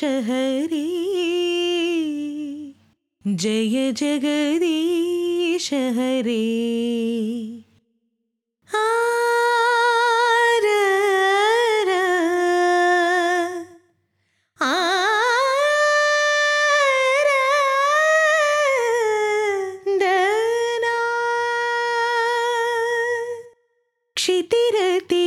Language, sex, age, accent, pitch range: Telugu, female, 20-39, native, 305-465 Hz